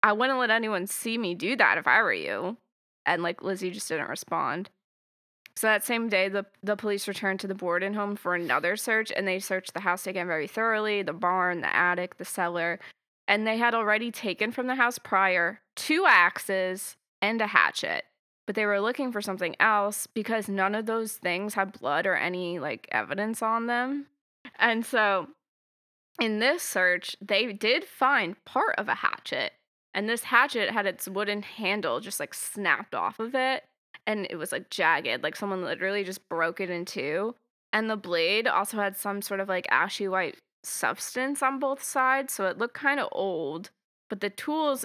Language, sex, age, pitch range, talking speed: English, female, 20-39, 190-230 Hz, 190 wpm